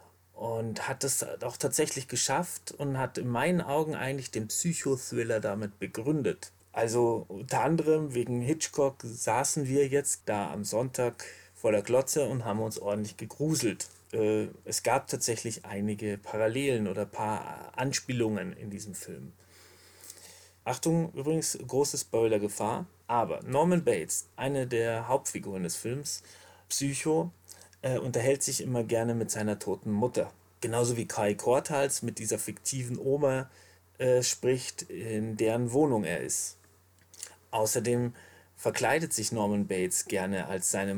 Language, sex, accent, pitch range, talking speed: German, male, German, 105-135 Hz, 130 wpm